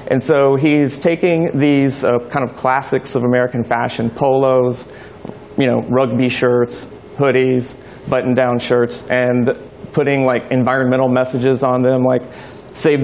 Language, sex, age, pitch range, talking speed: English, male, 30-49, 125-140 Hz, 135 wpm